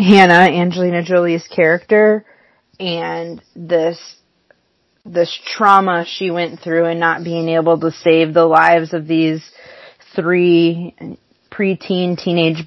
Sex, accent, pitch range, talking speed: female, American, 165-185 Hz, 115 wpm